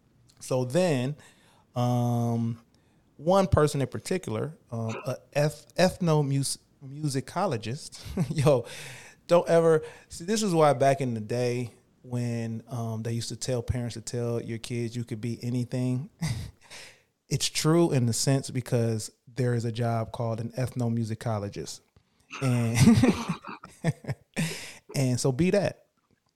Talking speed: 125 wpm